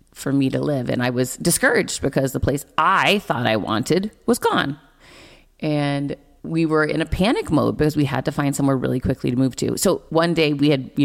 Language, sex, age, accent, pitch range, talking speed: English, female, 30-49, American, 130-160 Hz, 225 wpm